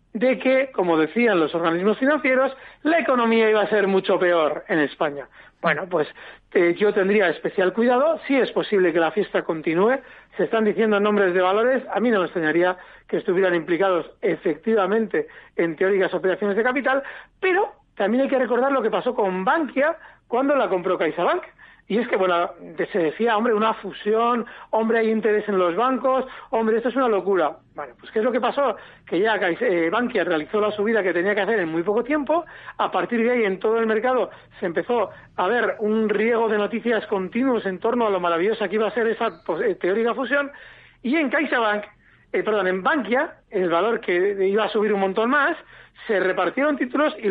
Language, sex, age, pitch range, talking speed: Spanish, male, 60-79, 195-260 Hz, 195 wpm